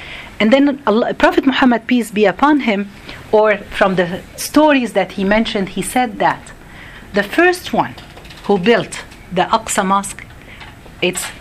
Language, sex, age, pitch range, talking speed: Arabic, female, 40-59, 195-250 Hz, 140 wpm